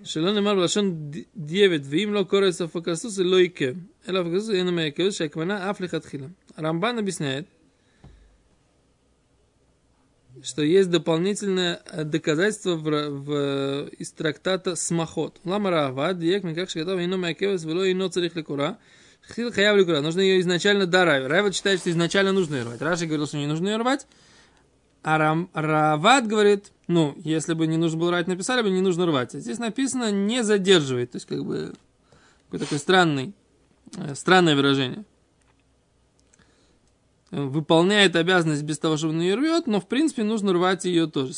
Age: 20-39